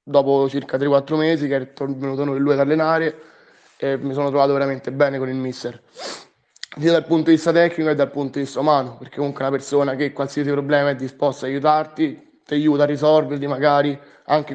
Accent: native